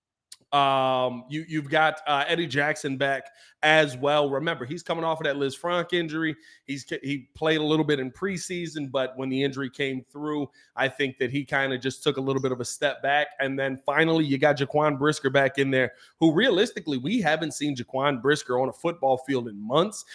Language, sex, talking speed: English, male, 210 wpm